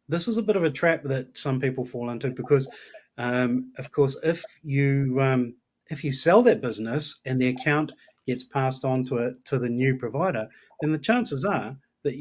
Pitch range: 125-150 Hz